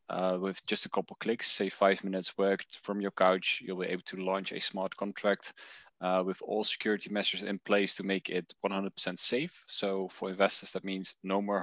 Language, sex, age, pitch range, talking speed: English, male, 20-39, 90-100 Hz, 205 wpm